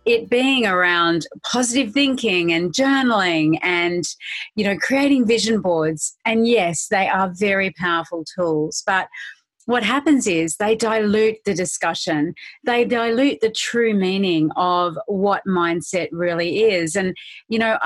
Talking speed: 140 wpm